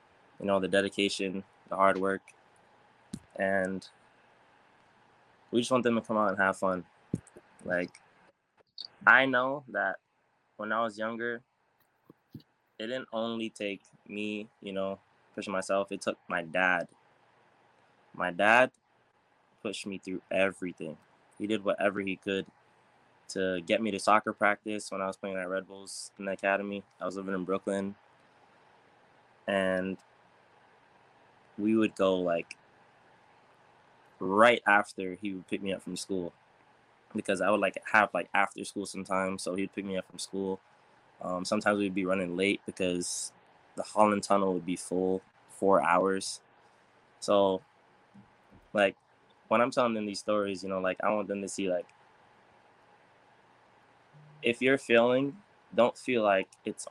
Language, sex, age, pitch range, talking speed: English, male, 10-29, 95-105 Hz, 150 wpm